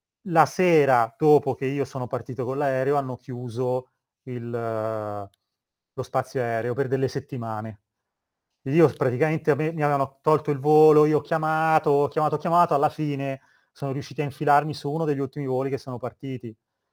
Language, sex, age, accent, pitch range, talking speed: Italian, male, 30-49, native, 125-150 Hz, 170 wpm